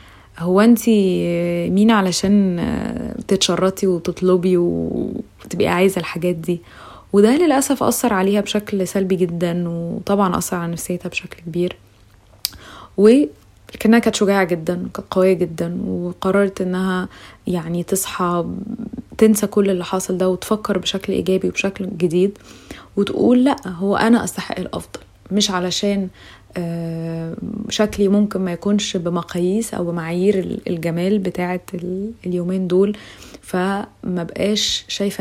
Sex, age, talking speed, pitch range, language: female, 20-39, 110 wpm, 170-205 Hz, Arabic